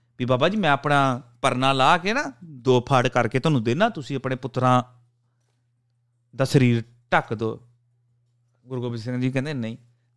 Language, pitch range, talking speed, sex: Punjabi, 120-180 Hz, 155 wpm, male